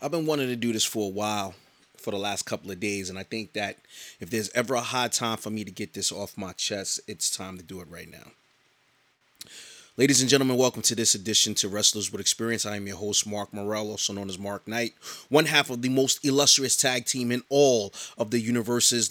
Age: 30-49